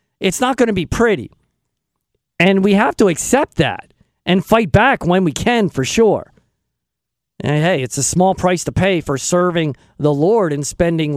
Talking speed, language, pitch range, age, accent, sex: 185 wpm, English, 160-215 Hz, 50-69, American, male